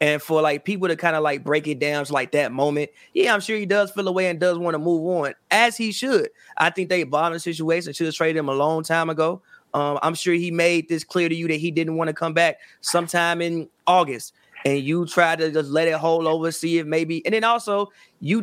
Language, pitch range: English, 170-260 Hz